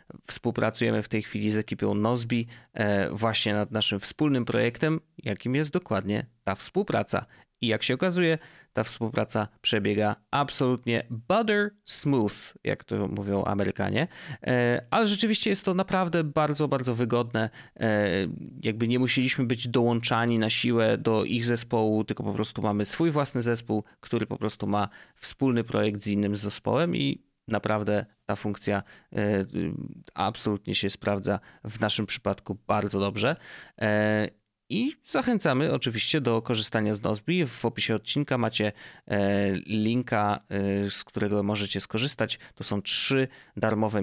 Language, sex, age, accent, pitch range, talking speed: Polish, male, 30-49, native, 105-125 Hz, 130 wpm